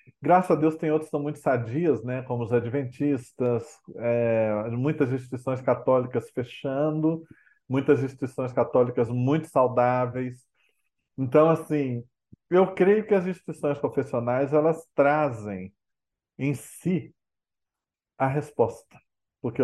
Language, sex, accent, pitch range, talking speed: Portuguese, male, Brazilian, 125-150 Hz, 115 wpm